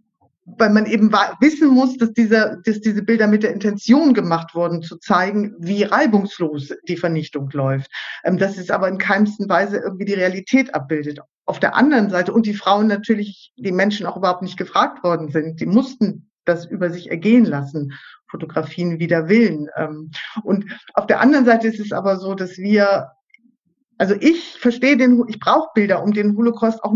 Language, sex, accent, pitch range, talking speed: German, female, German, 185-225 Hz, 185 wpm